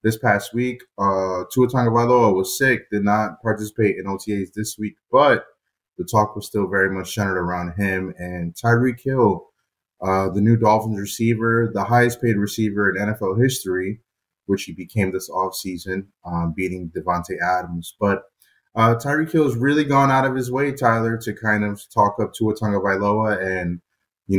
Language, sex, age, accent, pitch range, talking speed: English, male, 20-39, American, 95-120 Hz, 175 wpm